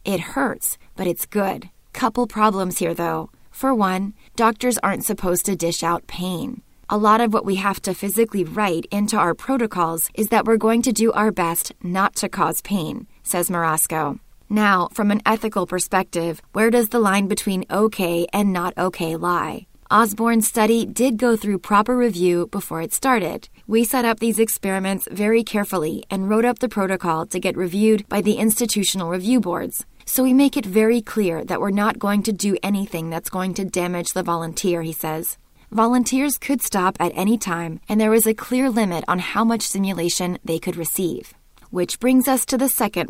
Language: English